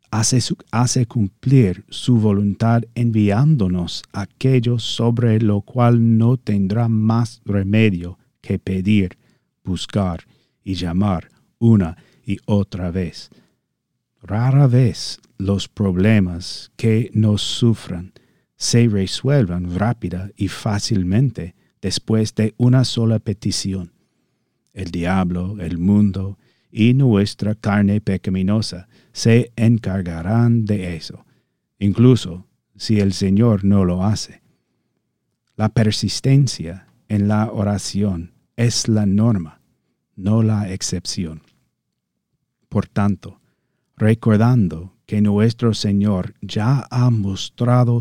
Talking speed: 100 wpm